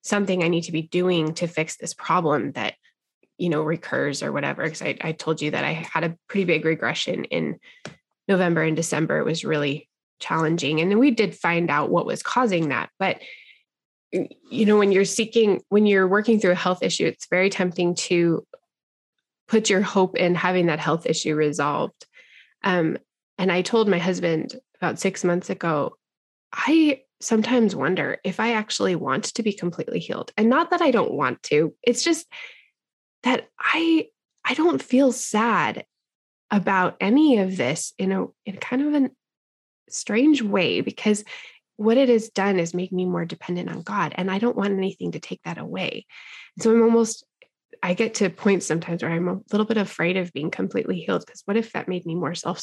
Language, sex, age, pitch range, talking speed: English, female, 20-39, 170-230 Hz, 190 wpm